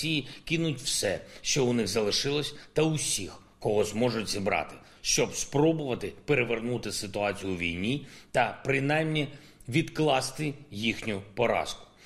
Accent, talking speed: native, 110 wpm